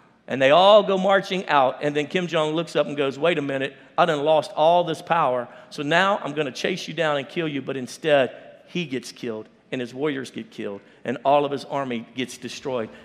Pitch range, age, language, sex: 150-195 Hz, 50-69, English, male